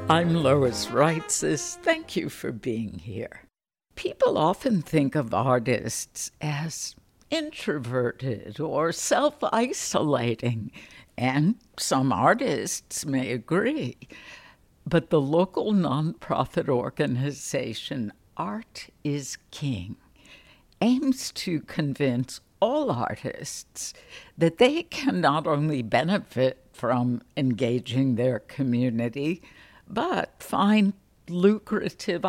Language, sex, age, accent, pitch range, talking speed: English, female, 60-79, American, 130-195 Hz, 90 wpm